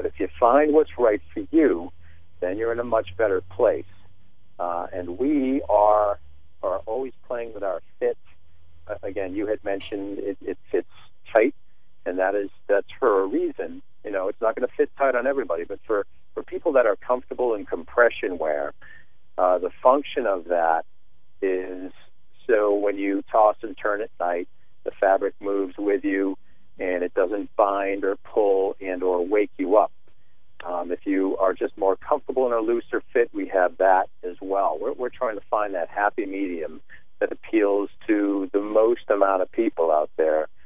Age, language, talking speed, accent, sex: 50-69, English, 185 wpm, American, male